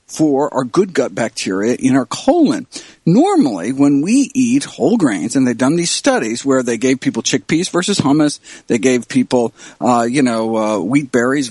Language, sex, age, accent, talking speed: English, male, 50-69, American, 180 wpm